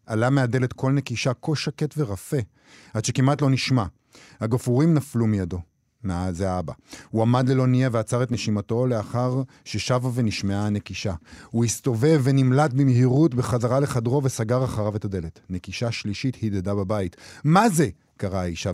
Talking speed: 145 wpm